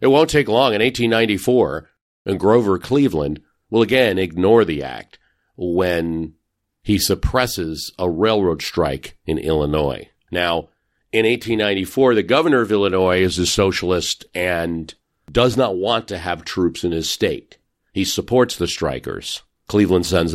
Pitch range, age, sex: 90-120 Hz, 50-69, male